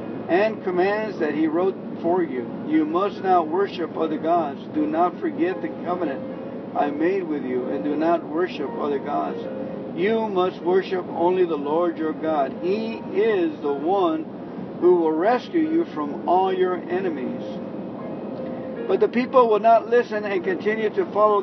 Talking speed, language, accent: 160 wpm, English, American